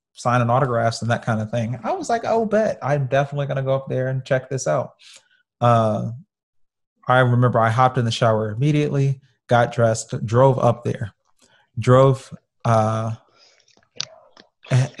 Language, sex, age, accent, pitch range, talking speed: English, male, 30-49, American, 115-135 Hz, 160 wpm